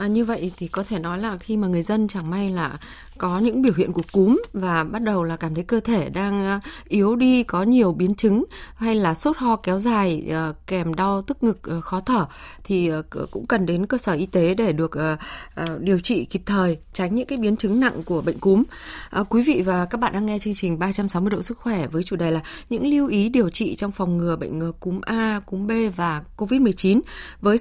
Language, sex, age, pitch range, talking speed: Vietnamese, female, 20-39, 185-245 Hz, 230 wpm